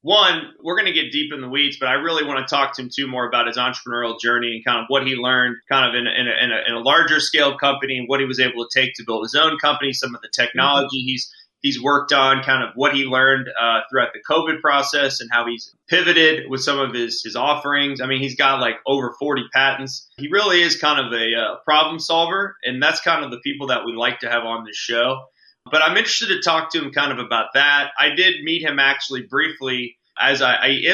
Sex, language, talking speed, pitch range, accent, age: male, English, 260 wpm, 125-150 Hz, American, 30-49